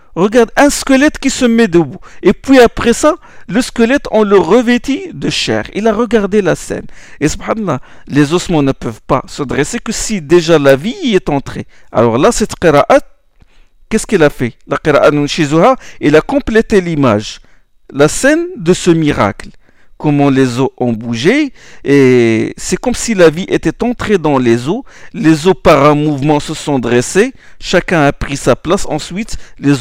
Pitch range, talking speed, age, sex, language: 145-225 Hz, 180 wpm, 50-69, male, French